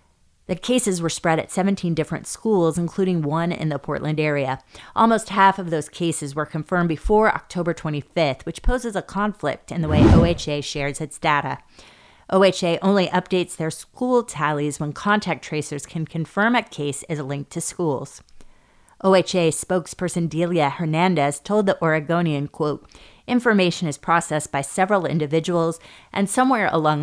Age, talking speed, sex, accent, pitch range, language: 30-49, 155 wpm, female, American, 150-185 Hz, English